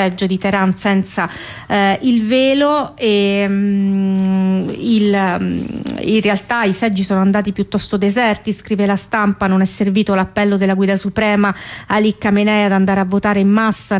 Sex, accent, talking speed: female, native, 160 wpm